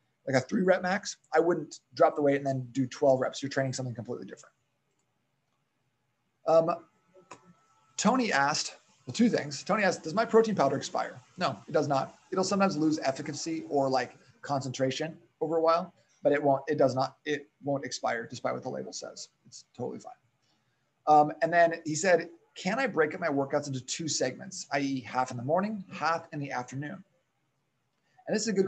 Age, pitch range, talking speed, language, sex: 30-49, 135-170 Hz, 190 wpm, English, male